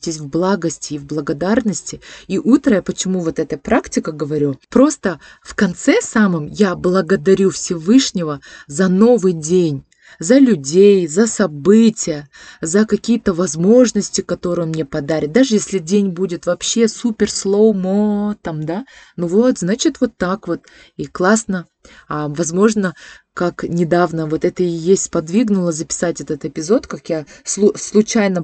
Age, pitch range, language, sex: 20-39, 155-205 Hz, Russian, female